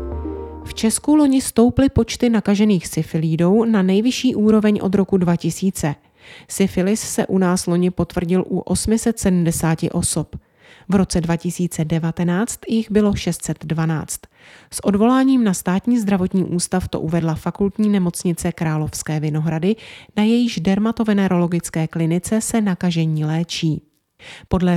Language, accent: Czech, native